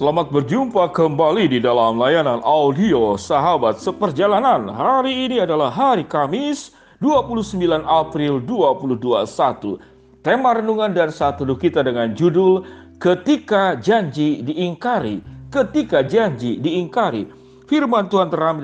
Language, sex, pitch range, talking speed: Indonesian, male, 145-210 Hz, 105 wpm